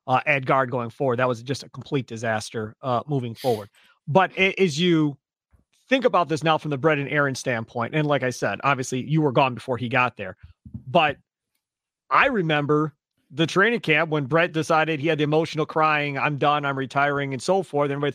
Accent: American